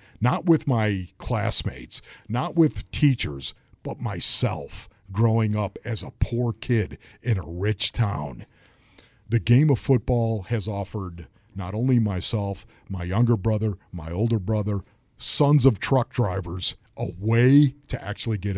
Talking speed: 140 wpm